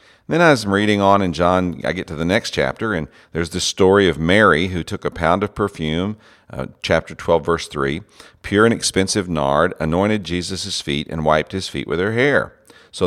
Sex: male